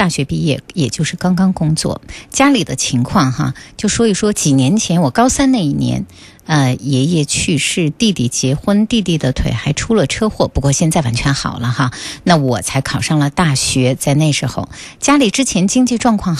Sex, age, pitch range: female, 50-69, 135-205 Hz